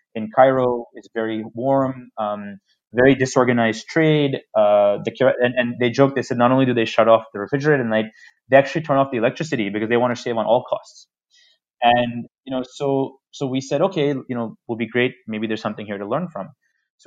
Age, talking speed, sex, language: 20-39, 220 wpm, male, English